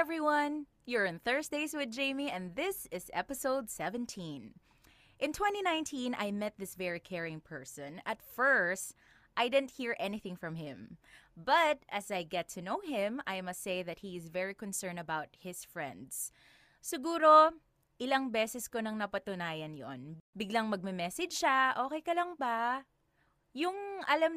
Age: 20-39